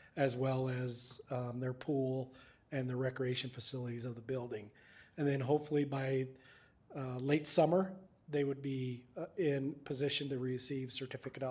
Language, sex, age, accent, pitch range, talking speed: English, male, 40-59, American, 125-150 Hz, 150 wpm